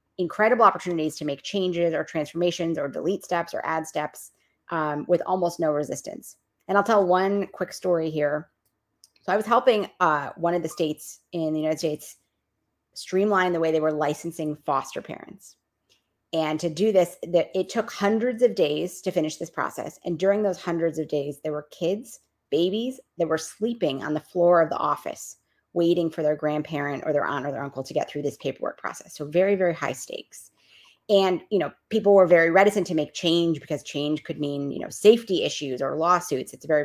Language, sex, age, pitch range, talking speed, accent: English, female, 30-49, 155-190 Hz, 195 wpm, American